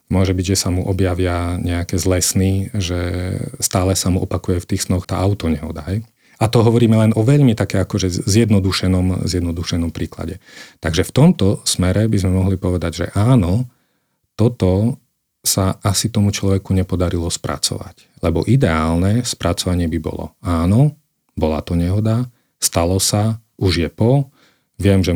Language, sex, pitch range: Slovak, male, 90-110 Hz